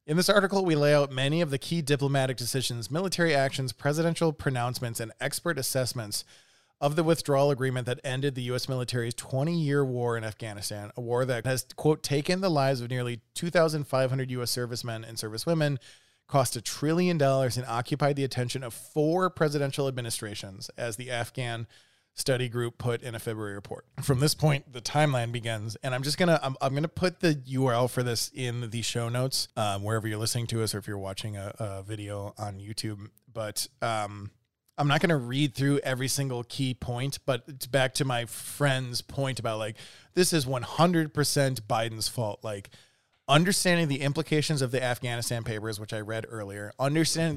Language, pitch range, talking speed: English, 115-140 Hz, 185 wpm